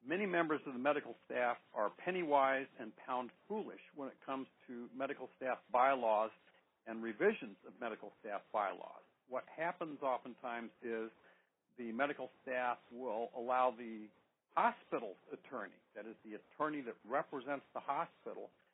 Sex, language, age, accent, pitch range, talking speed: male, English, 60-79, American, 115-135 Hz, 140 wpm